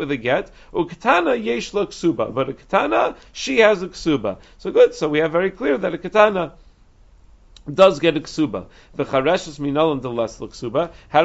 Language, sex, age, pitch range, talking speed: English, male, 50-69, 145-195 Hz, 185 wpm